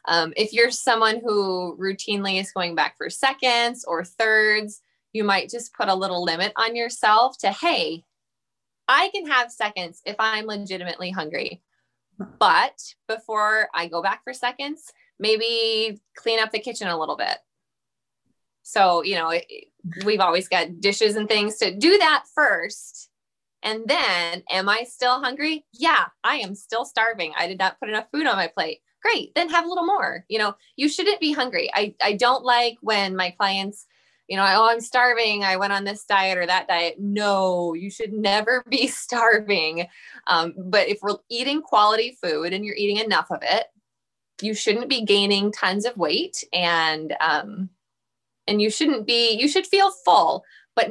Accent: American